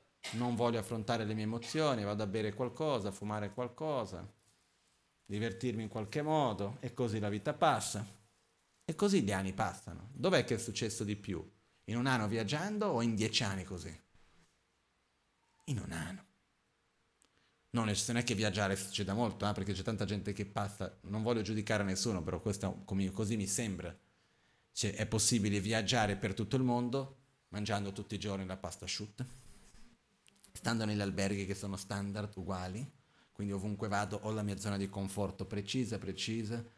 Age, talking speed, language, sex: 30-49, 160 wpm, Italian, male